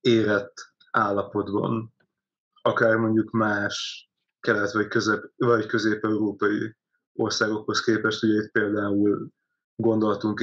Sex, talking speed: male, 90 wpm